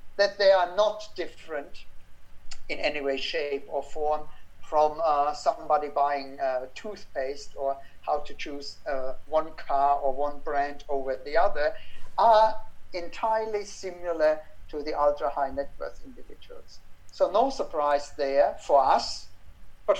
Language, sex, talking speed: English, male, 135 wpm